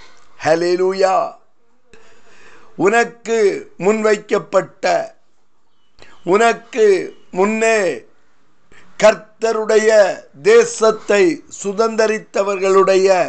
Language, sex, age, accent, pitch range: Tamil, male, 50-69, native, 190-230 Hz